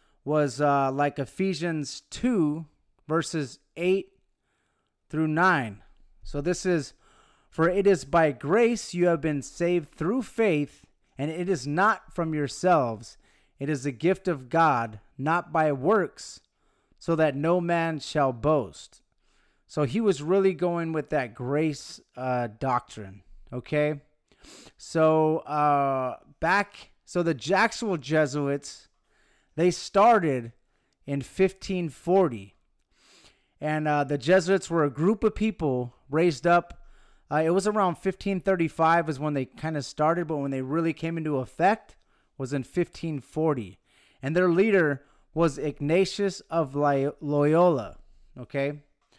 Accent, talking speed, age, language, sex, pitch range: American, 130 wpm, 30-49, English, male, 140-175 Hz